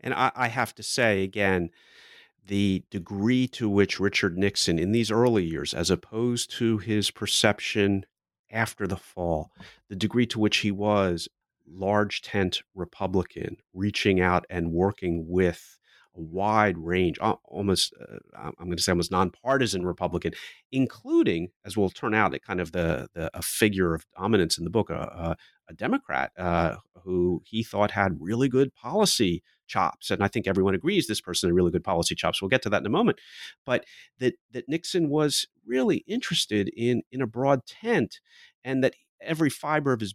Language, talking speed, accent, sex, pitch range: English, 175 wpm, American, male, 95-130 Hz